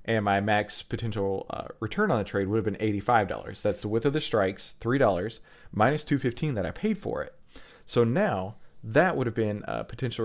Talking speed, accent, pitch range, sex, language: 205 wpm, American, 100-130 Hz, male, English